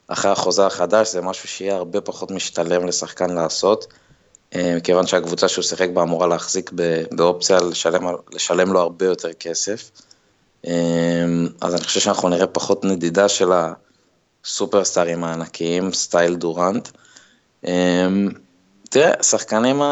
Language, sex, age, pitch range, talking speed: Hebrew, male, 20-39, 85-95 Hz, 115 wpm